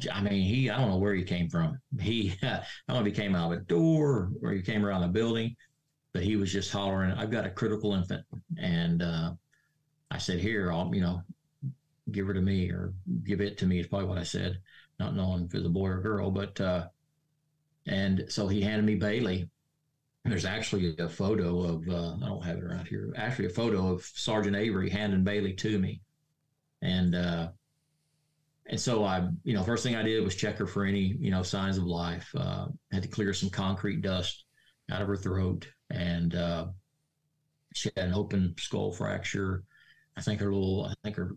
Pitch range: 95-125 Hz